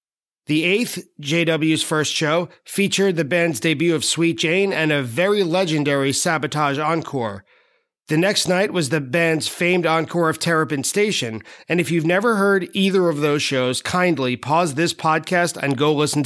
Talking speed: 165 wpm